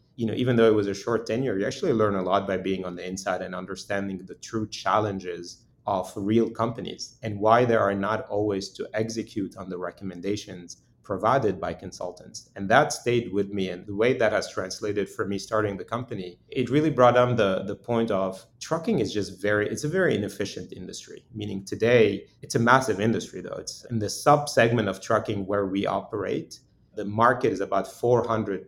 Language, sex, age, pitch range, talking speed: English, male, 30-49, 100-120 Hz, 200 wpm